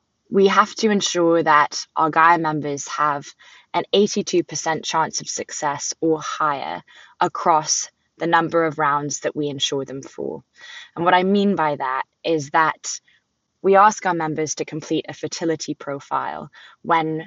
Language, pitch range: English, 150-190 Hz